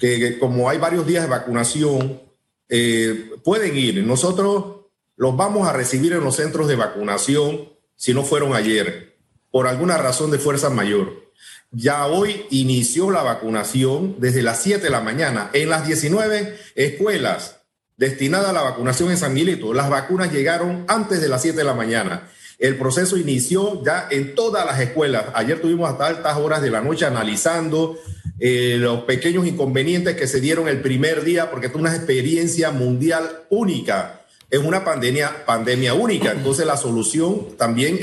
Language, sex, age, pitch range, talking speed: Spanish, male, 50-69, 125-170 Hz, 165 wpm